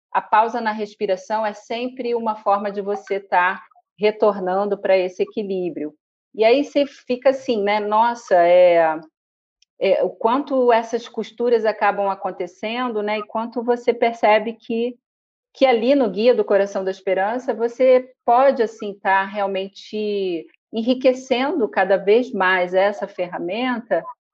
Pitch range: 180-235 Hz